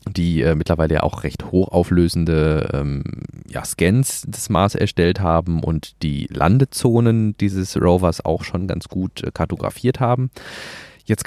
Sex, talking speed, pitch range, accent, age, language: male, 135 wpm, 85-110 Hz, German, 30-49, German